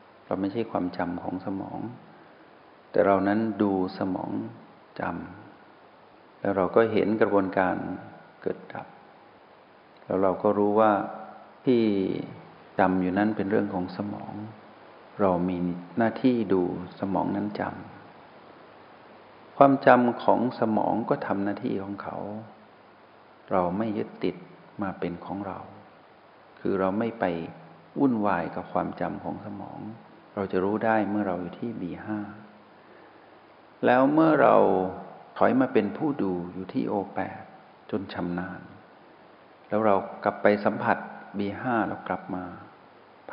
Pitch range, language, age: 90-105 Hz, Thai, 60-79